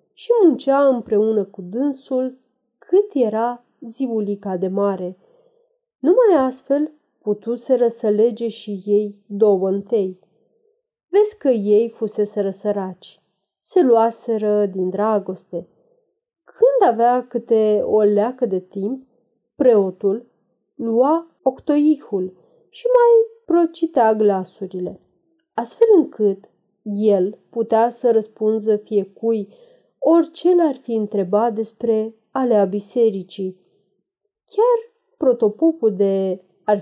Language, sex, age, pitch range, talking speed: Romanian, female, 30-49, 205-280 Hz, 100 wpm